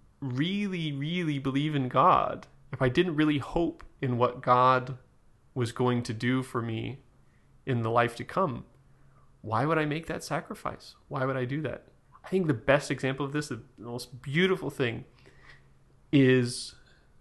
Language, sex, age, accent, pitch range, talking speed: English, male, 30-49, American, 120-140 Hz, 165 wpm